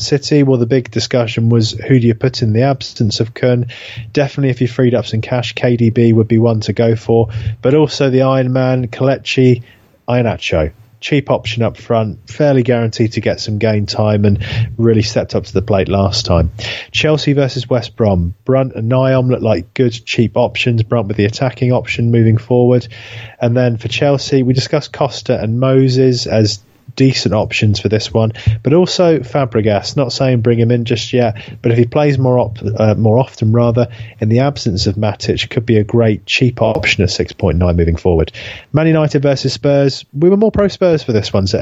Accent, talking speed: British, 200 wpm